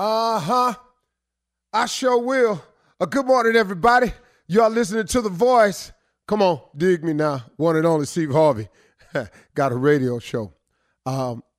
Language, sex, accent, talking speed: English, male, American, 150 wpm